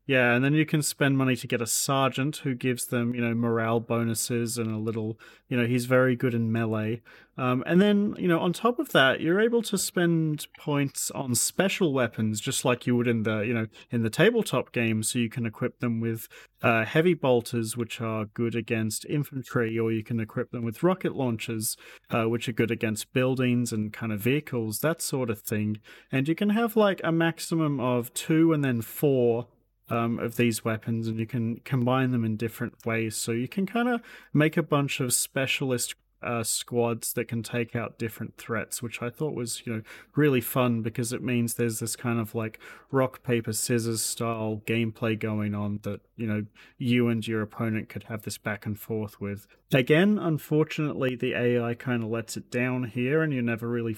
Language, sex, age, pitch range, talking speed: English, male, 30-49, 115-135 Hz, 205 wpm